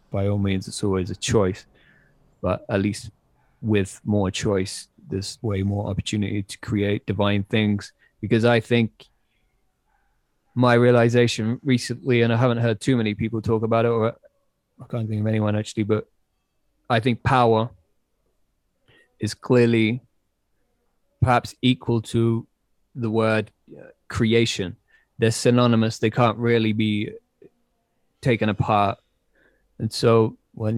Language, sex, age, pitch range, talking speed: English, male, 20-39, 105-120 Hz, 130 wpm